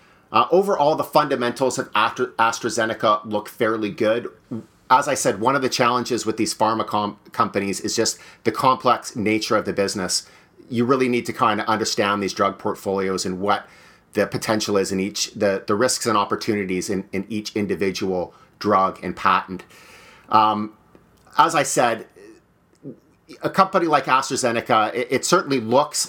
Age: 30-49